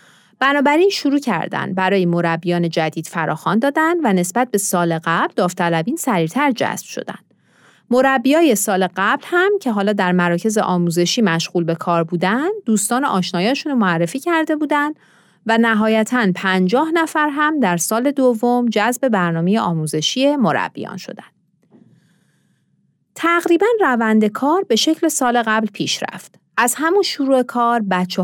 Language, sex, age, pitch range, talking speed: Persian, female, 30-49, 180-270 Hz, 130 wpm